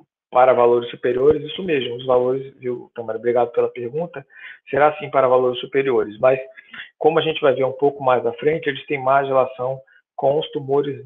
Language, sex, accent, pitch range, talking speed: Portuguese, male, Brazilian, 135-165 Hz, 190 wpm